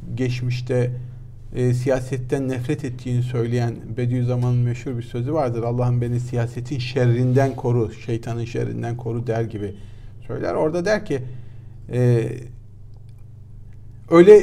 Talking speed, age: 110 wpm, 50-69